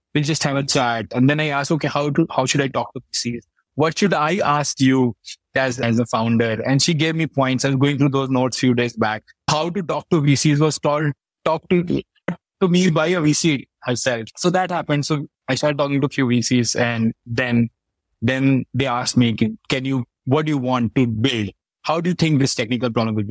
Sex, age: male, 20-39